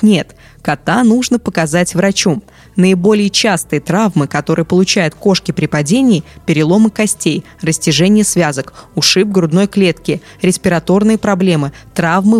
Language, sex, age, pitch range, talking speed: Russian, female, 20-39, 165-210 Hz, 110 wpm